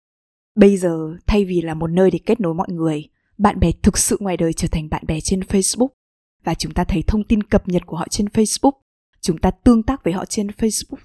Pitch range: 170-225 Hz